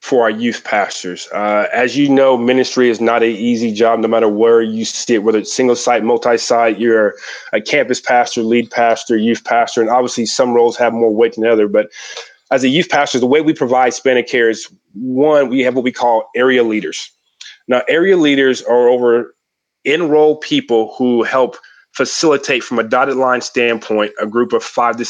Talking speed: 195 wpm